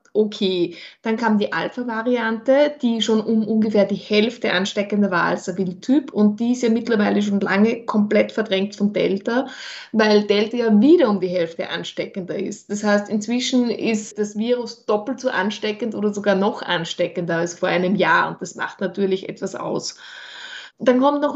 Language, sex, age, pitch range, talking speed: German, female, 20-39, 205-240 Hz, 175 wpm